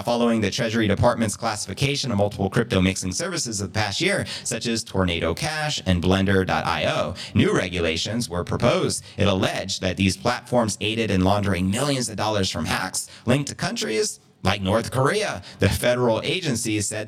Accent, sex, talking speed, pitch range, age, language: American, male, 160 wpm, 95-120 Hz, 30-49, English